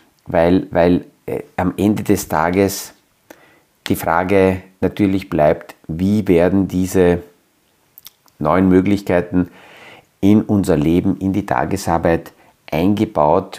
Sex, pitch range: male, 85-100 Hz